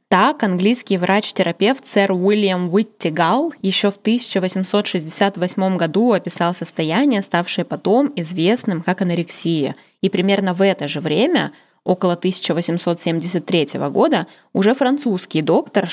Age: 10-29